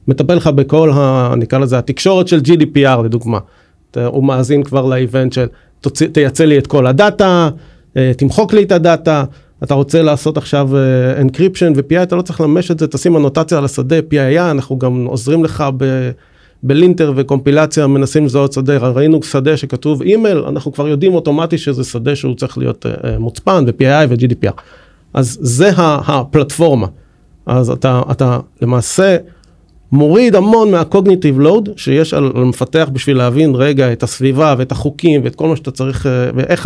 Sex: male